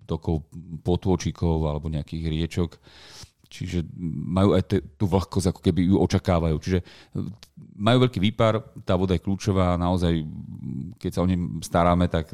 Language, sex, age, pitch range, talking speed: Slovak, male, 30-49, 85-100 Hz, 140 wpm